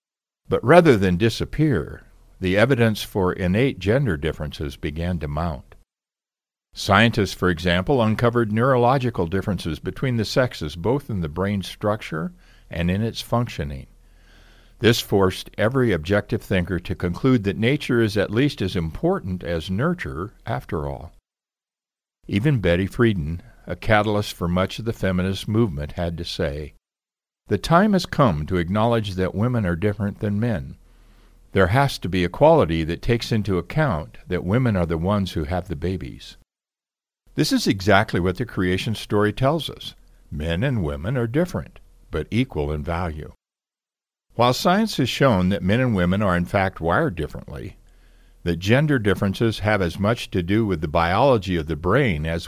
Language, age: English, 60-79